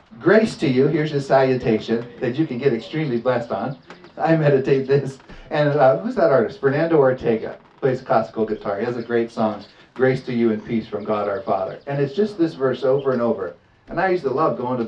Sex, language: male, English